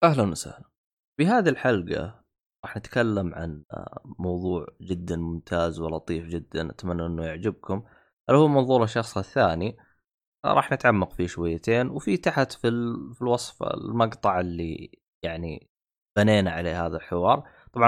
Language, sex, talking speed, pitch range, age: Arabic, male, 125 wpm, 90-120 Hz, 20-39